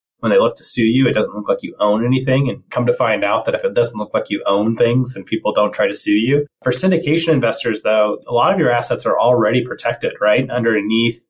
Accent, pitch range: American, 115-150 Hz